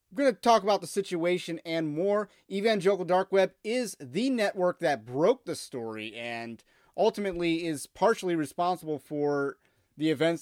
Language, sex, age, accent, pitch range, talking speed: English, male, 30-49, American, 150-200 Hz, 150 wpm